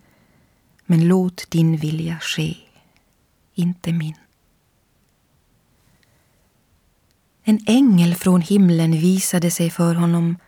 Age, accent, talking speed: 30-49, native, 85 wpm